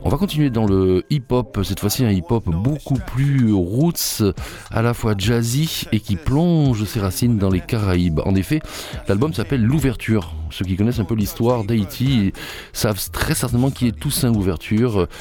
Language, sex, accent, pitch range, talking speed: French, male, French, 95-120 Hz, 175 wpm